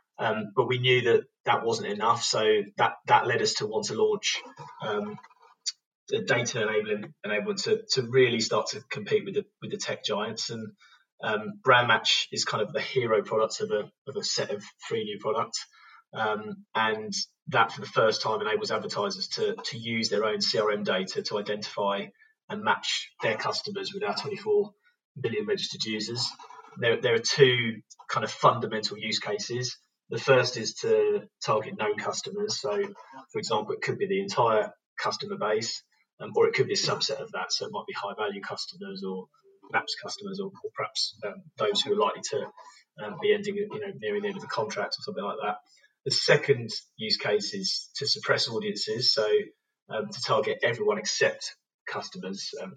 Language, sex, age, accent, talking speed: English, male, 20-39, British, 190 wpm